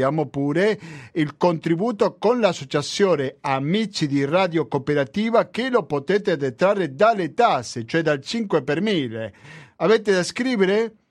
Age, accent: 50-69, native